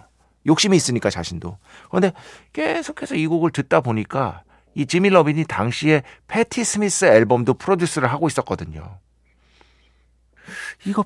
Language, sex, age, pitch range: Korean, male, 40-59, 95-160 Hz